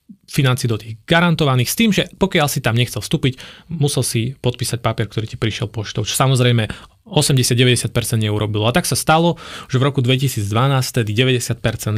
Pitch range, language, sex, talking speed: 115-140 Hz, Slovak, male, 160 wpm